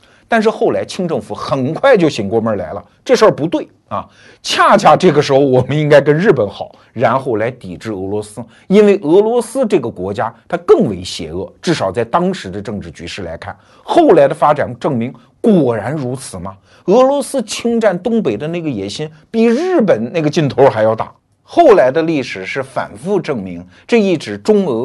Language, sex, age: Chinese, male, 50-69